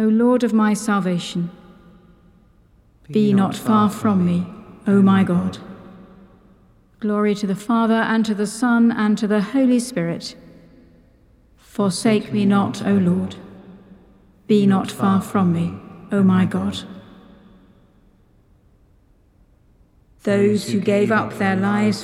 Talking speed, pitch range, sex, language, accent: 125 wpm, 190-225 Hz, female, English, British